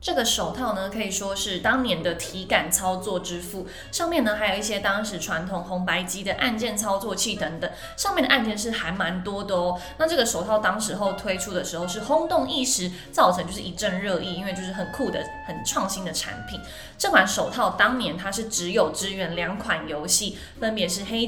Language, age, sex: Chinese, 20-39, female